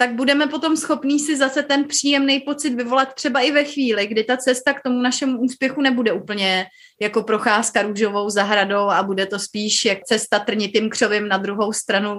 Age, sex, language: 30-49, female, Czech